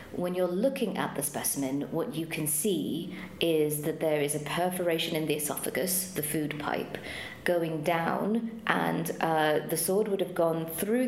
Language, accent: English, British